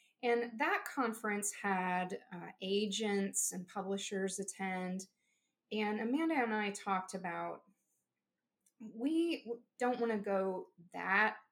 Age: 20-39